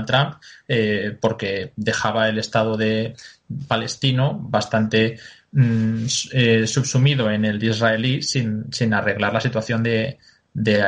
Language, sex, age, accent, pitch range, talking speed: Spanish, male, 20-39, Spanish, 110-130 Hz, 125 wpm